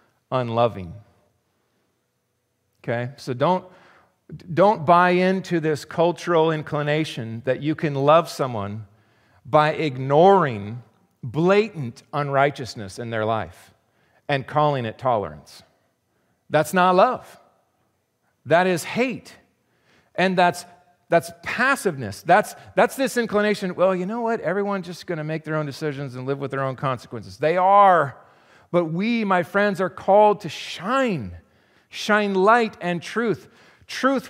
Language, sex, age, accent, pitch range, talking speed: English, male, 40-59, American, 130-195 Hz, 130 wpm